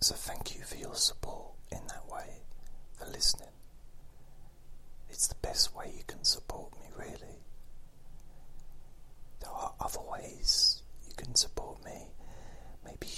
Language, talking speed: English, 130 wpm